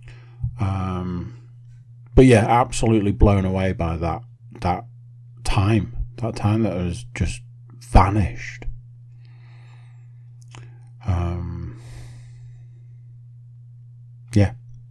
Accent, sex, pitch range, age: British, male, 100-120 Hz, 30-49